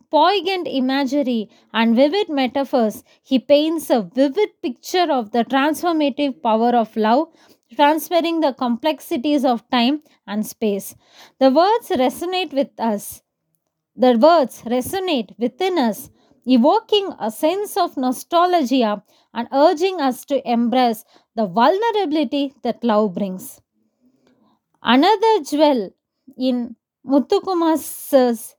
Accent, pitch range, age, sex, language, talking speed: native, 245-330 Hz, 20-39, female, Hindi, 110 wpm